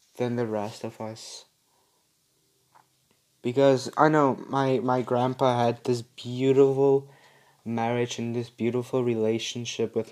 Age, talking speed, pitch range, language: 20-39, 120 wpm, 115-130 Hz, English